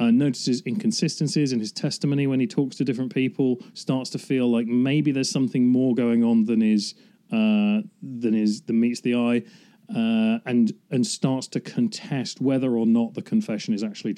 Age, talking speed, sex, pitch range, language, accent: 40-59, 185 wpm, male, 115-160 Hz, English, British